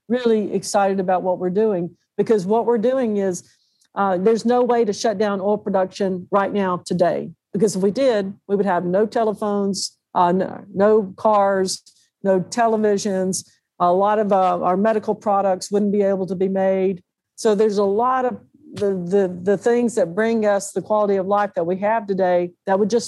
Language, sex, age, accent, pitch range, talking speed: English, female, 60-79, American, 185-220 Hz, 190 wpm